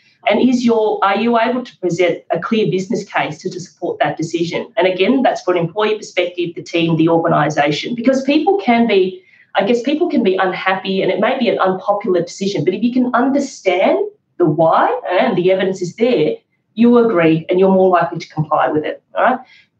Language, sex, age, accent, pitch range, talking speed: English, female, 30-49, Australian, 170-225 Hz, 210 wpm